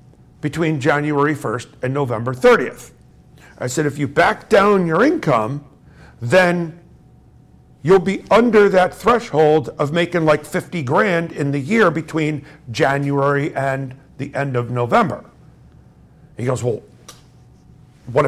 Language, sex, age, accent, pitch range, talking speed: English, male, 50-69, American, 140-185 Hz, 130 wpm